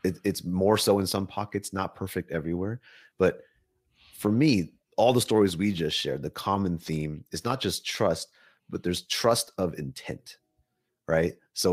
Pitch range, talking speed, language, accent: 80-105 Hz, 165 wpm, English, American